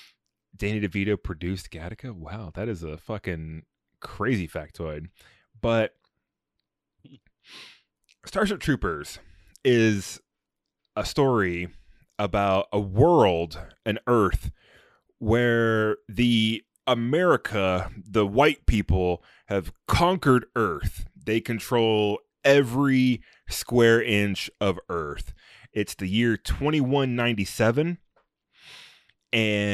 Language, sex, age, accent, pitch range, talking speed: English, male, 20-39, American, 95-120 Hz, 85 wpm